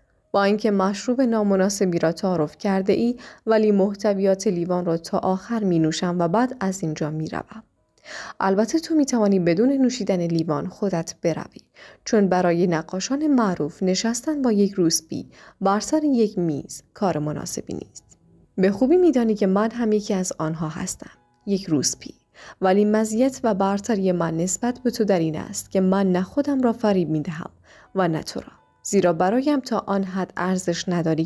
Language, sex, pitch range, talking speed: Persian, female, 180-225 Hz, 170 wpm